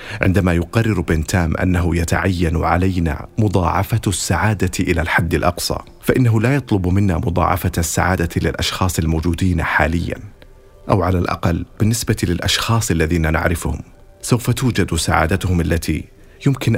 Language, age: Arabic, 40-59